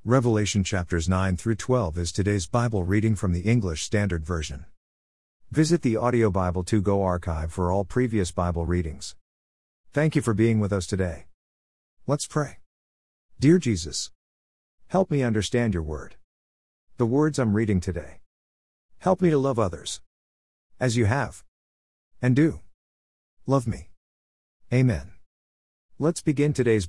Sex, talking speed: male, 140 wpm